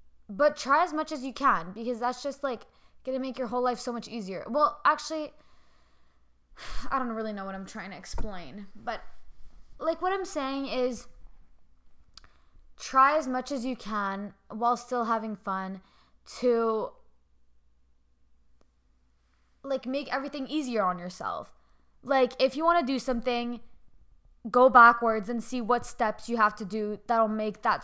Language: English